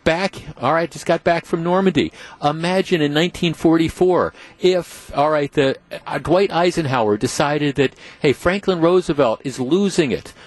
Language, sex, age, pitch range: English, male, 50-69, 140-190 Hz